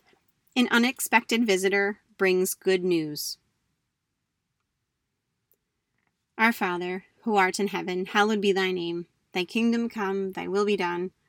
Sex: female